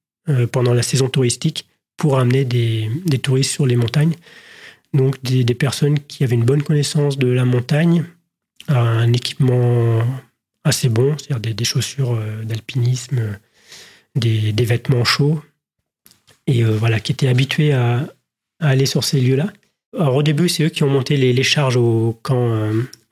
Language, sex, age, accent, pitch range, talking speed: French, male, 30-49, French, 125-155 Hz, 165 wpm